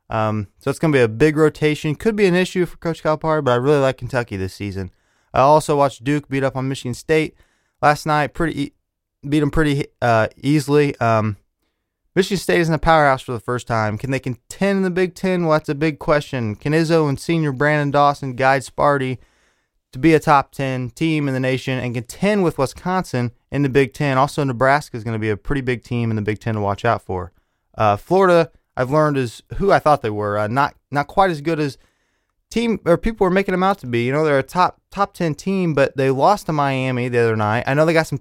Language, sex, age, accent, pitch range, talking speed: English, male, 20-39, American, 120-160 Hz, 240 wpm